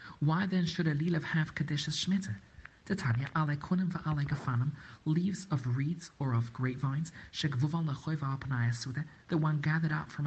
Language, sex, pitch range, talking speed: English, male, 135-175 Hz, 115 wpm